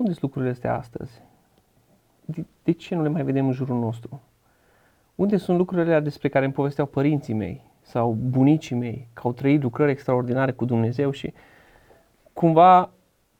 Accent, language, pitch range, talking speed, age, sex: native, Romanian, 125-165 Hz, 160 wpm, 30-49, male